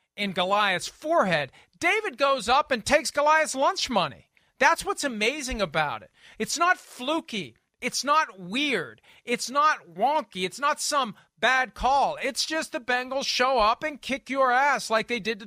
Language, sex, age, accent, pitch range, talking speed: English, male, 40-59, American, 180-250 Hz, 170 wpm